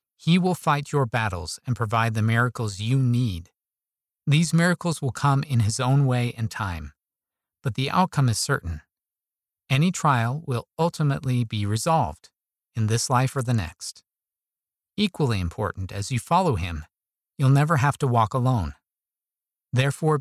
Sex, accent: male, American